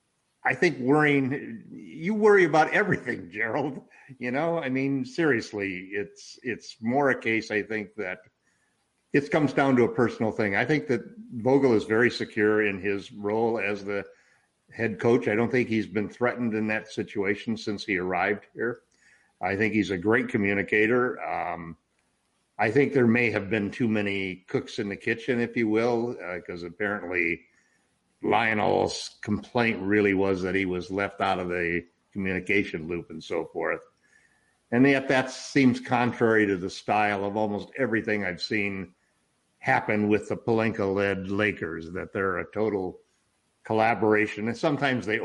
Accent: American